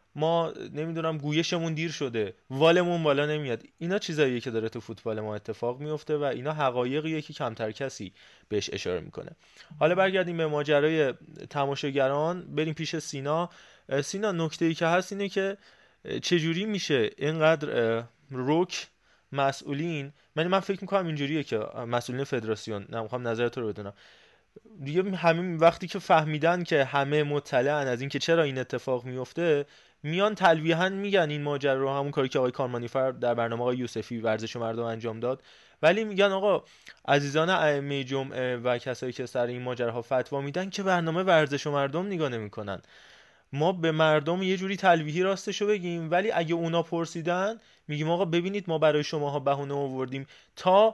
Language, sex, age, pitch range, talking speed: Persian, male, 20-39, 130-170 Hz, 155 wpm